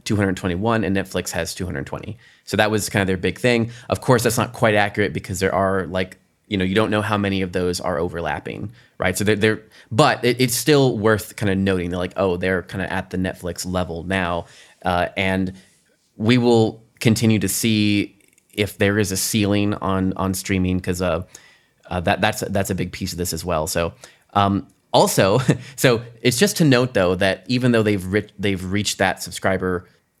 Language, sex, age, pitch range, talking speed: English, male, 20-39, 95-110 Hz, 205 wpm